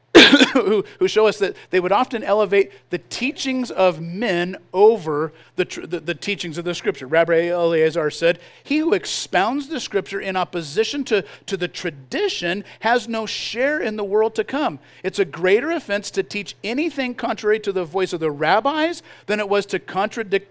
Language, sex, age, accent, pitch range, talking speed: English, male, 50-69, American, 175-230 Hz, 180 wpm